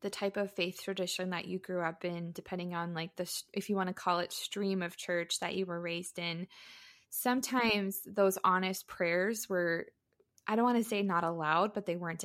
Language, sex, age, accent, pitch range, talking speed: English, female, 20-39, American, 175-200 Hz, 210 wpm